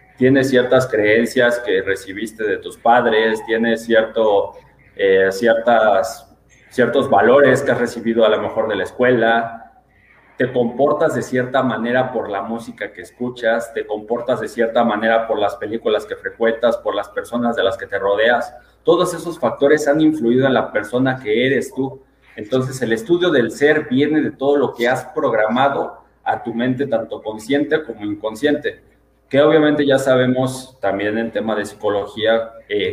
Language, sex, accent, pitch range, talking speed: Spanish, male, Mexican, 115-140 Hz, 165 wpm